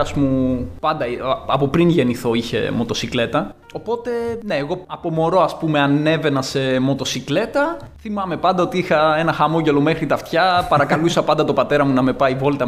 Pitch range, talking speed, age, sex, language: 130-170 Hz, 160 wpm, 20-39, male, Greek